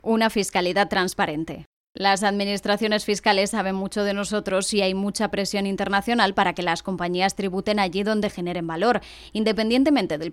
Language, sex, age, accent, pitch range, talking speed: Spanish, female, 20-39, Spanish, 180-215 Hz, 150 wpm